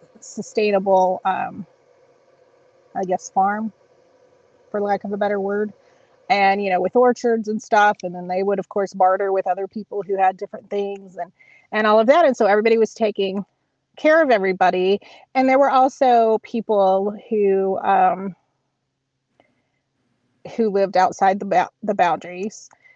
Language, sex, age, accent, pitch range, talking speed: English, female, 30-49, American, 190-225 Hz, 155 wpm